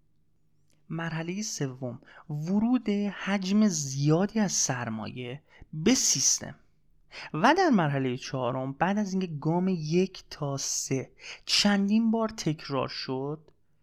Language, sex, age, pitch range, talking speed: Persian, male, 30-49, 140-195 Hz, 105 wpm